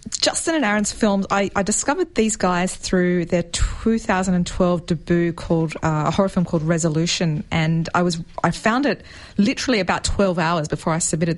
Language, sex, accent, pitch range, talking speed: English, female, Australian, 160-195 Hz, 175 wpm